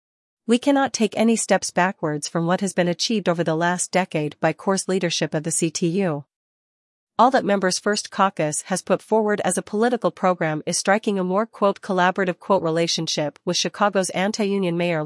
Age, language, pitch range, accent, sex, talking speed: 40-59, English, 170-200 Hz, American, female, 180 wpm